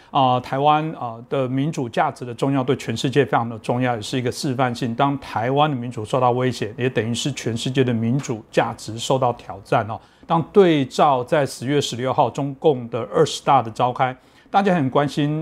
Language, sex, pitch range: Chinese, male, 120-145 Hz